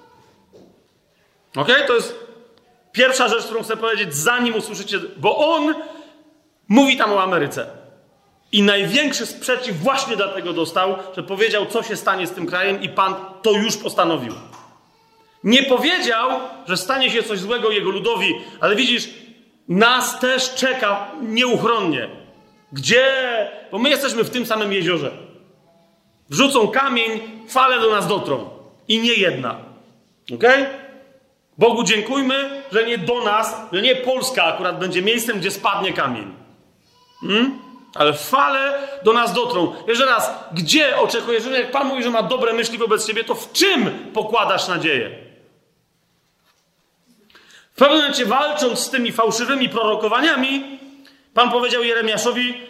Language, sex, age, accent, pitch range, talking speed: Polish, male, 40-59, native, 210-265 Hz, 135 wpm